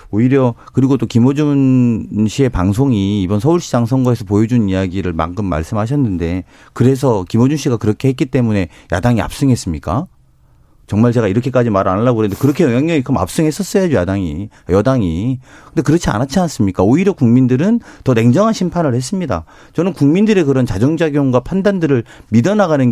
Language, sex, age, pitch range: Korean, male, 40-59, 105-150 Hz